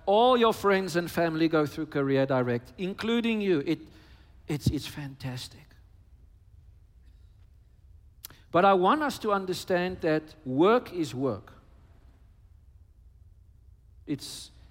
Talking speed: 105 wpm